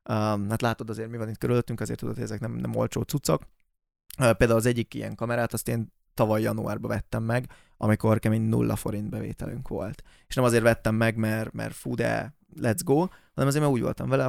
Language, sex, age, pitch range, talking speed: Hungarian, male, 20-39, 110-130 Hz, 215 wpm